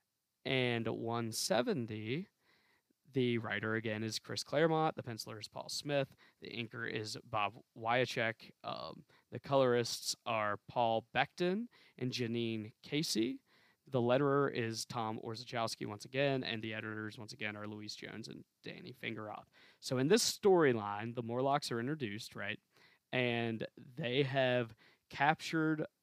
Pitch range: 110-130 Hz